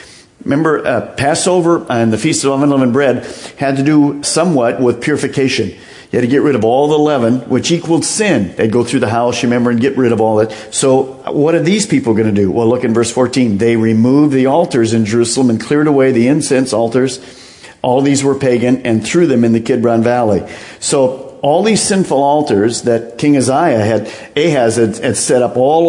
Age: 50-69